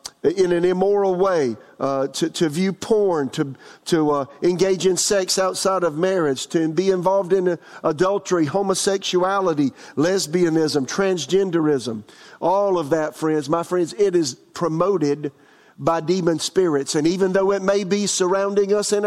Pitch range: 145-180 Hz